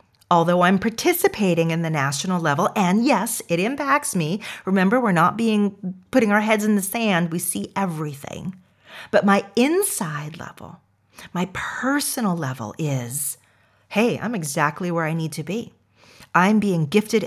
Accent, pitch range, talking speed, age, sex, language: American, 155-215 Hz, 155 wpm, 40-59, female, English